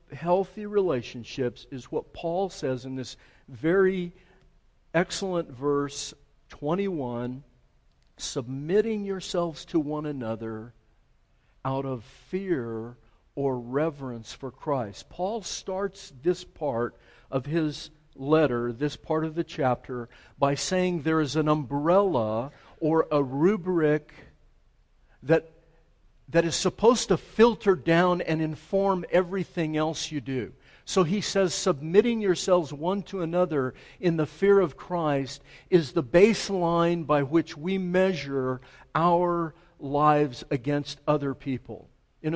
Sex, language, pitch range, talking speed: male, English, 135-180 Hz, 120 wpm